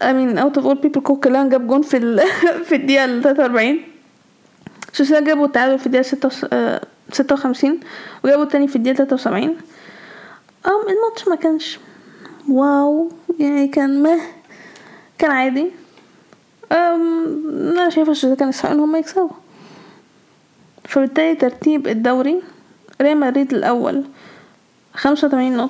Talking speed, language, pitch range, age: 105 wpm, Arabic, 265-315 Hz, 10-29